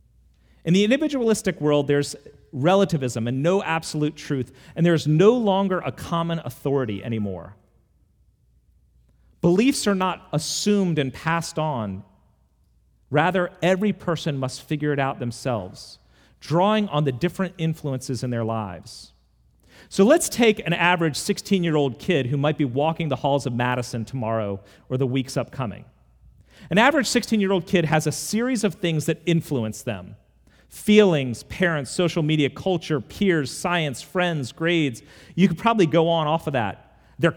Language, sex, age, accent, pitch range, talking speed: English, male, 40-59, American, 115-175 Hz, 145 wpm